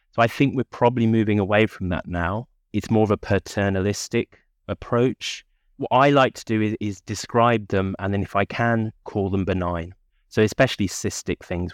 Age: 30-49